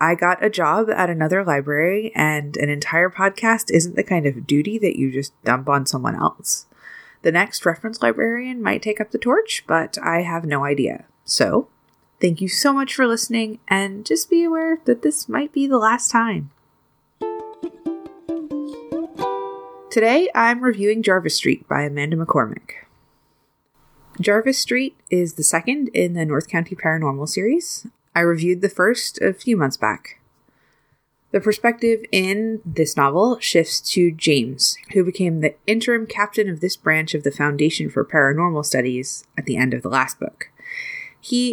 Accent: American